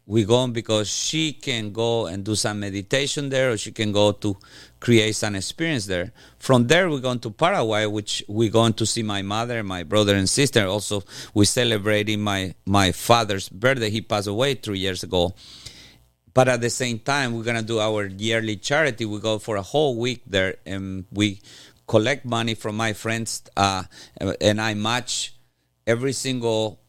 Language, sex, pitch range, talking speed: English, male, 95-115 Hz, 185 wpm